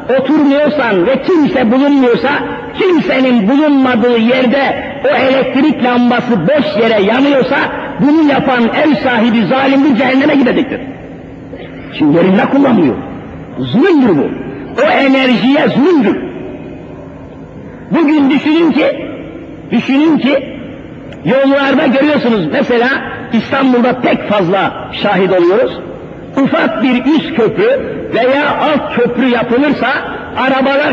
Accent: native